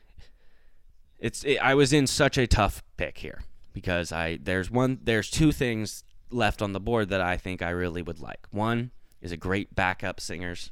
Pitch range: 90-120 Hz